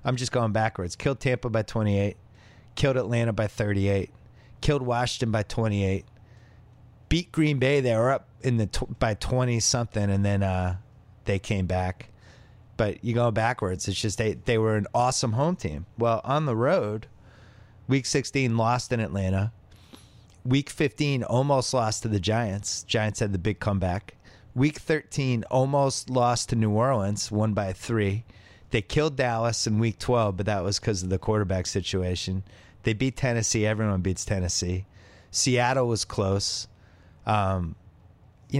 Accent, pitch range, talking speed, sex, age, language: American, 100-120 Hz, 160 wpm, male, 30-49, English